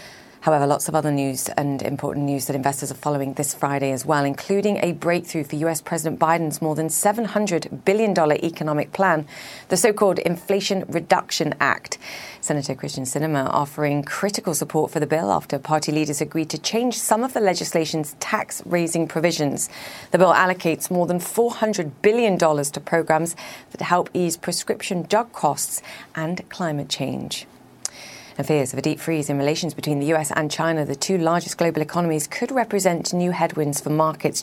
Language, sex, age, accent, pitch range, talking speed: English, female, 30-49, British, 150-185 Hz, 165 wpm